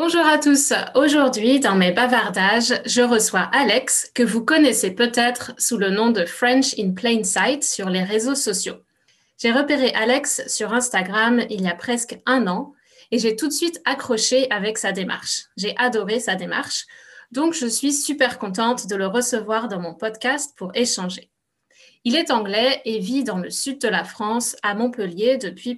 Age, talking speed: 20-39, 180 wpm